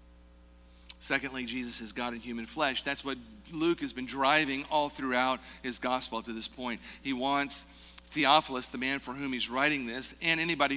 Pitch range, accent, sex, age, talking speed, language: 100-140 Hz, American, male, 50-69, 180 wpm, English